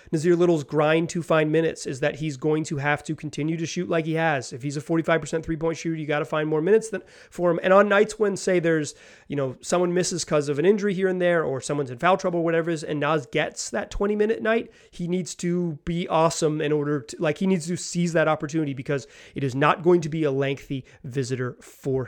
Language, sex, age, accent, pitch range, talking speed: English, male, 30-49, American, 160-210 Hz, 250 wpm